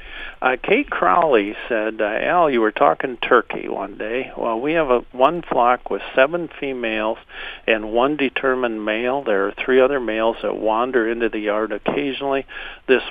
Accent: American